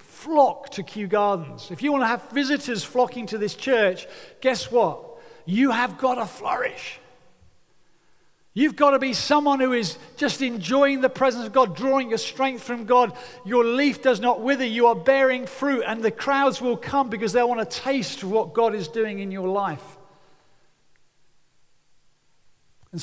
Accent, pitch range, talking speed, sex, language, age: British, 185-245 Hz, 170 wpm, male, English, 40-59